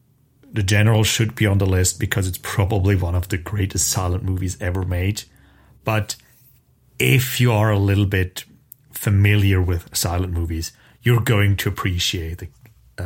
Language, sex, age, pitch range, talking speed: English, male, 30-49, 95-120 Hz, 155 wpm